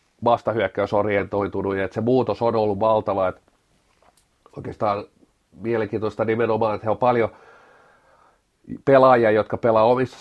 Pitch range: 100-120 Hz